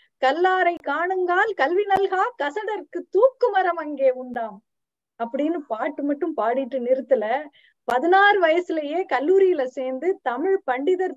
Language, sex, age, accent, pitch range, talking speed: Tamil, female, 20-39, native, 265-375 Hz, 95 wpm